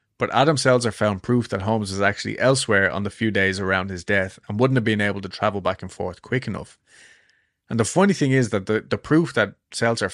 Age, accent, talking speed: 20-39, Irish, 235 wpm